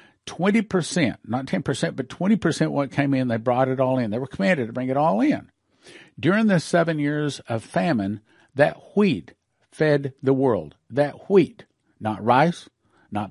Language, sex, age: English, male, 50-69